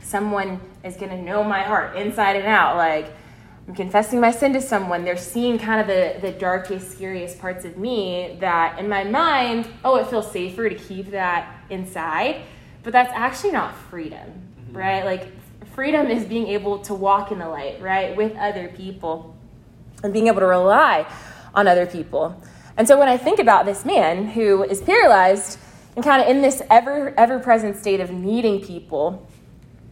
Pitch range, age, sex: 185-230 Hz, 20-39, female